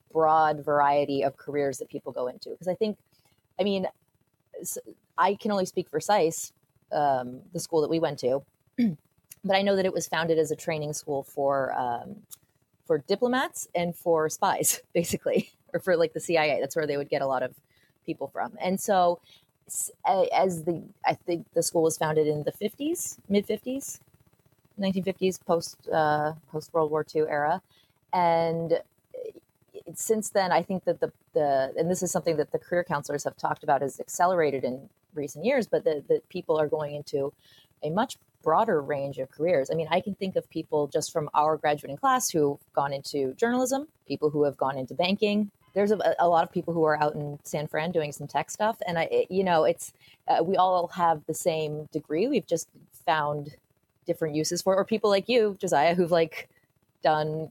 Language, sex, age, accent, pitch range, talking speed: English, female, 30-49, American, 150-185 Hz, 190 wpm